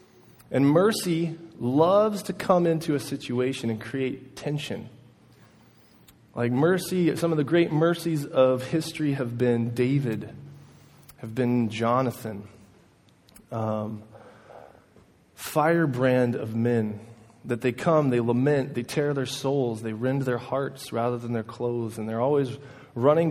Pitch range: 115-140 Hz